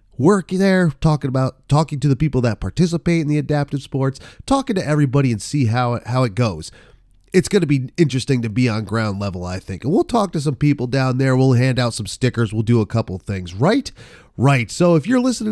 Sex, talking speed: male, 230 wpm